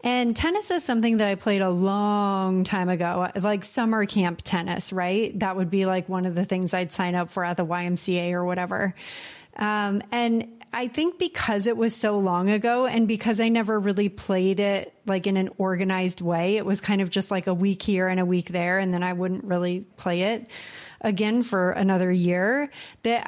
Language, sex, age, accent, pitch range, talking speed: English, female, 30-49, American, 185-235 Hz, 205 wpm